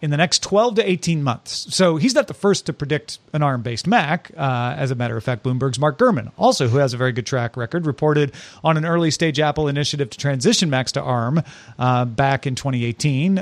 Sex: male